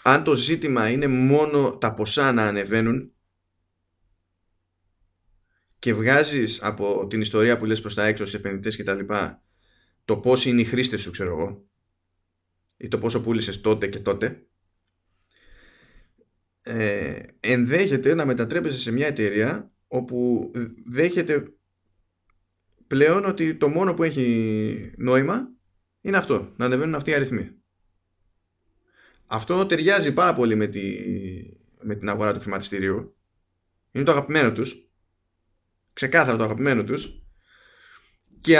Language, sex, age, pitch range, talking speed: Greek, male, 20-39, 95-130 Hz, 125 wpm